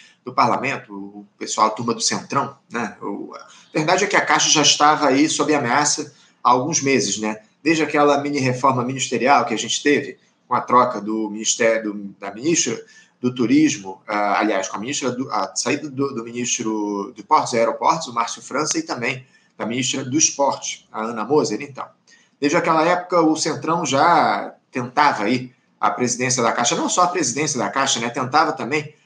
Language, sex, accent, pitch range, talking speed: Portuguese, male, Brazilian, 120-155 Hz, 190 wpm